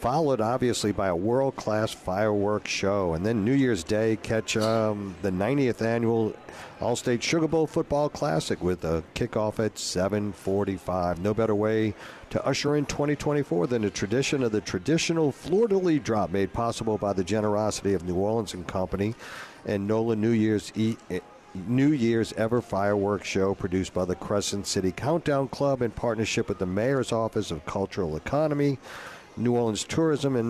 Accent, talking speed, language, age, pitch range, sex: American, 165 wpm, English, 50-69, 95-115 Hz, male